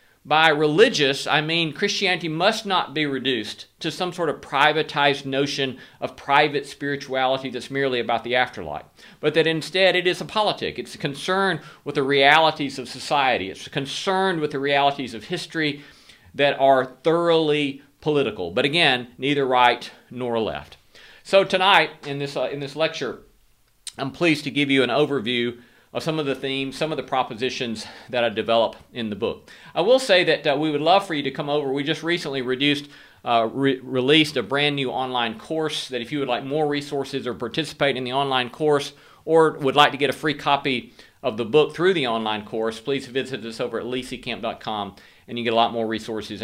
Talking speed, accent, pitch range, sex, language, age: 195 wpm, American, 125-155 Hz, male, English, 40-59